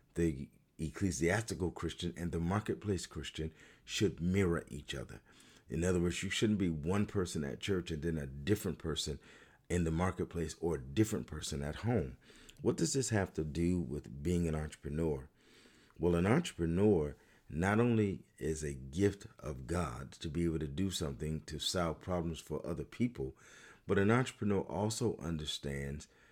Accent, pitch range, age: American, 75-100 Hz, 40-59